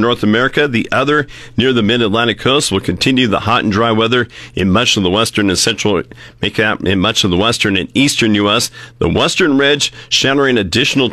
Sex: male